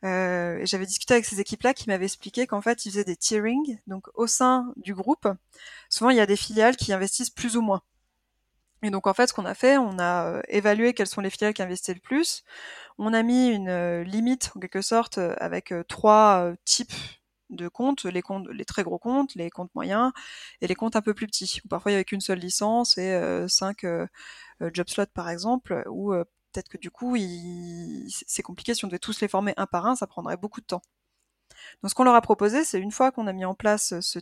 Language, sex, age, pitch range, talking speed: French, female, 20-39, 185-235 Hz, 235 wpm